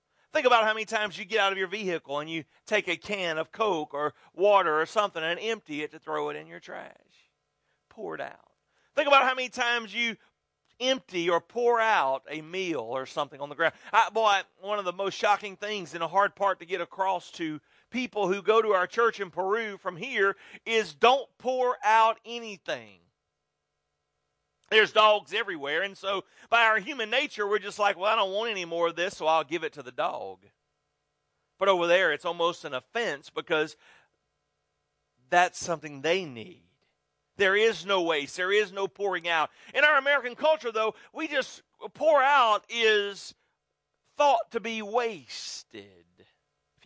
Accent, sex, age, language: American, male, 40-59, English